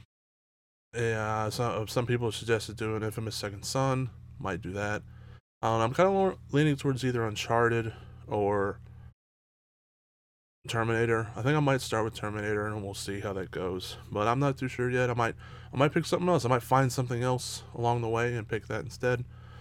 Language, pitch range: English, 110-130 Hz